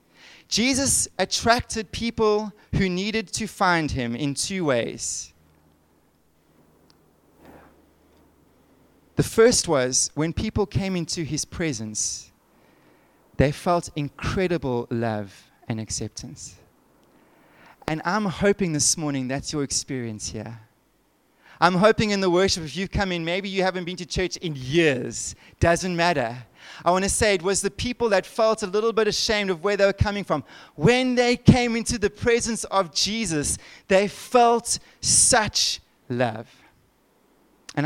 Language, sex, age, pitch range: English, male, 30-49, 135-210 Hz